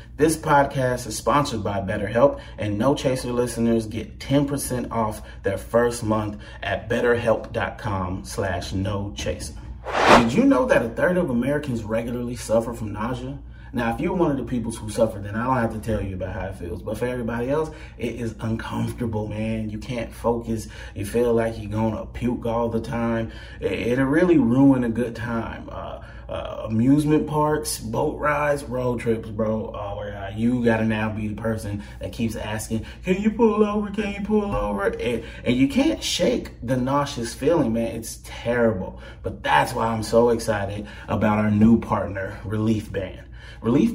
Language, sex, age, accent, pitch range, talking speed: English, male, 30-49, American, 110-140 Hz, 180 wpm